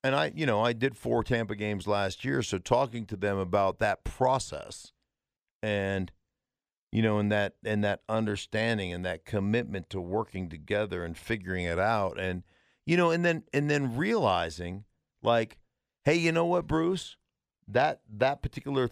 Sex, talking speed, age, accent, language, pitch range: male, 170 wpm, 50-69, American, English, 95-130 Hz